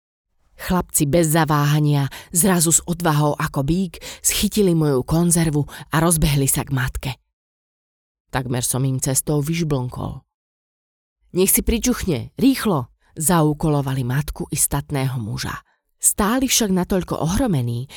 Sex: female